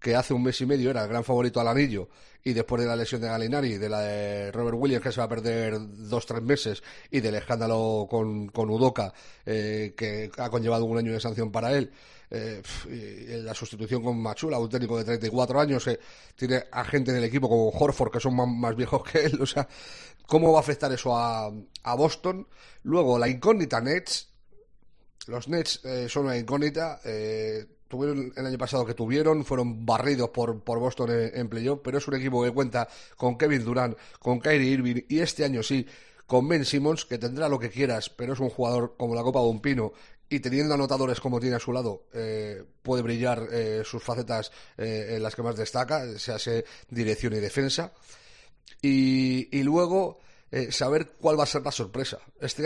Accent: Spanish